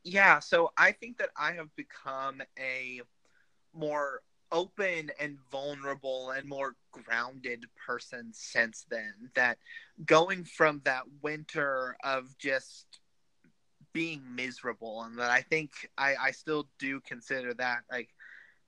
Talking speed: 125 wpm